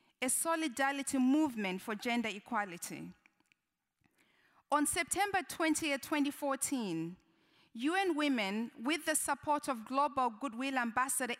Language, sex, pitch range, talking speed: English, female, 235-295 Hz, 100 wpm